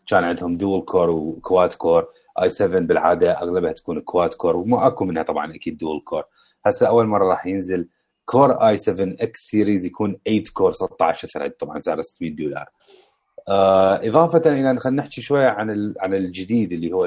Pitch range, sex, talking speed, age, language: 90-120 Hz, male, 175 wpm, 30-49, Arabic